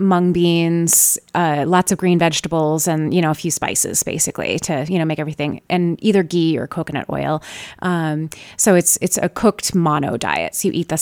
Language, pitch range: English, 165-210 Hz